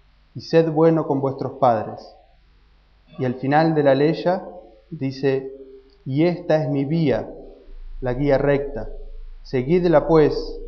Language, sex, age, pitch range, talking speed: Spanish, male, 20-39, 130-150 Hz, 130 wpm